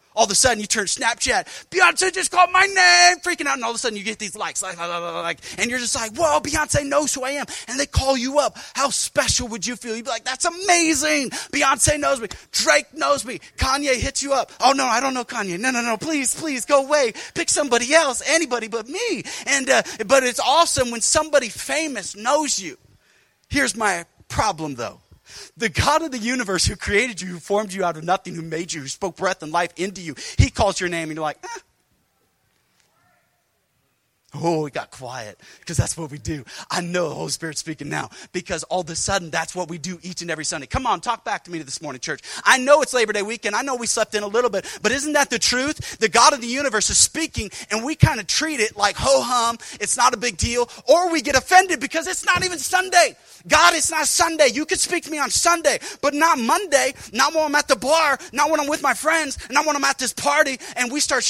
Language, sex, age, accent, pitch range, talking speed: English, male, 30-49, American, 200-300 Hz, 240 wpm